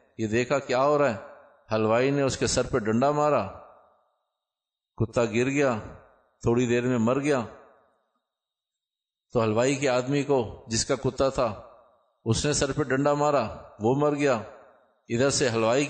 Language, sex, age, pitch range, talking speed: Urdu, male, 50-69, 120-150 Hz, 160 wpm